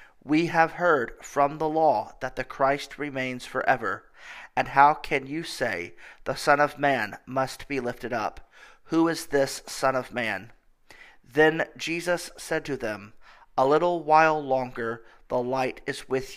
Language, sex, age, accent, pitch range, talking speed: English, male, 40-59, American, 120-145 Hz, 160 wpm